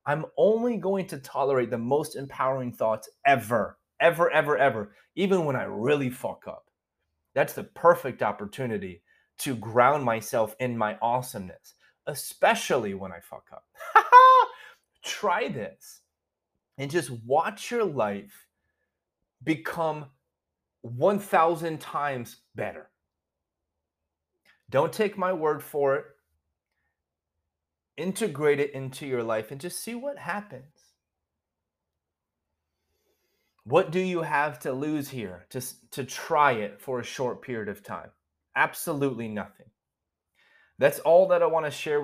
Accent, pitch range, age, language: American, 100-160 Hz, 30-49, English